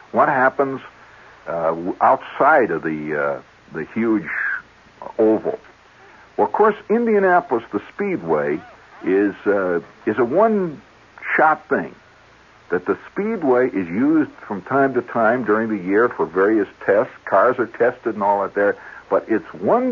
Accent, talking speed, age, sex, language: American, 140 wpm, 60-79, male, English